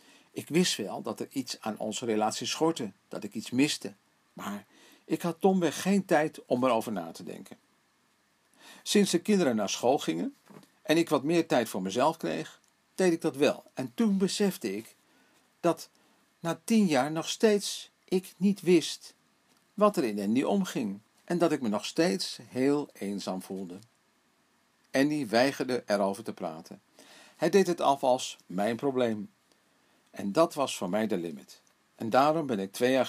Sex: male